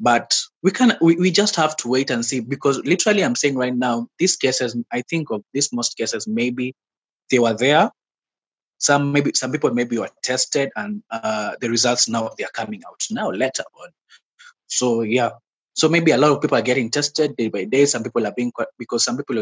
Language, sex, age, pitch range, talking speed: English, male, 20-39, 115-150 Hz, 215 wpm